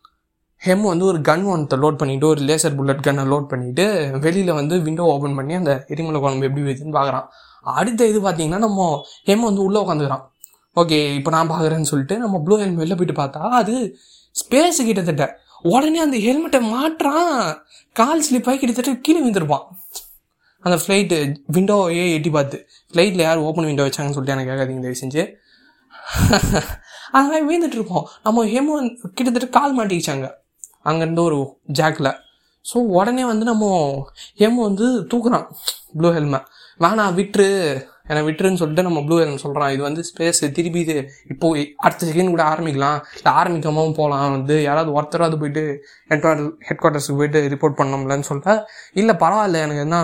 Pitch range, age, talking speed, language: 150-205 Hz, 20-39, 150 wpm, Tamil